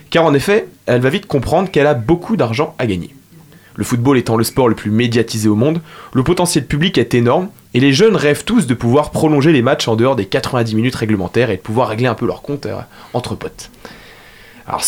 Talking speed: 220 wpm